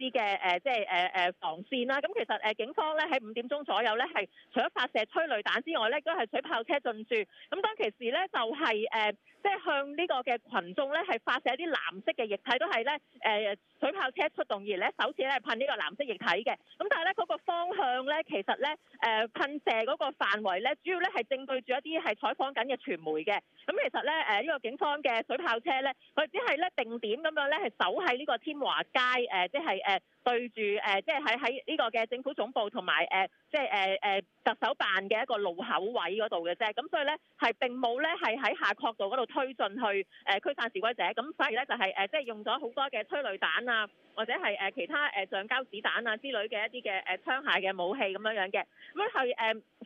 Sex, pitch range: female, 210-305 Hz